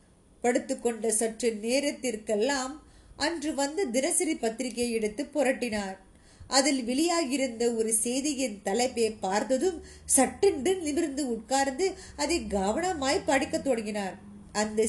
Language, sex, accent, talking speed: Tamil, female, native, 40 wpm